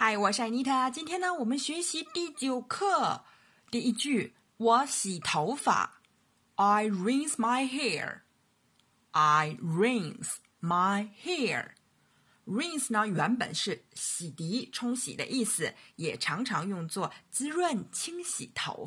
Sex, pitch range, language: female, 175-260 Hz, Chinese